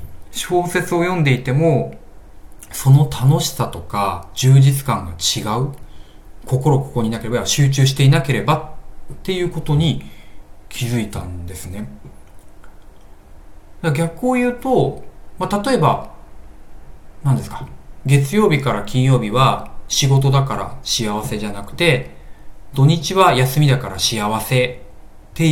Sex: male